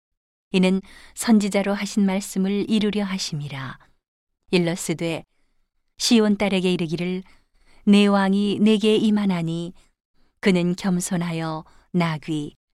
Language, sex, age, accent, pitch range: Korean, female, 40-59, native, 160-205 Hz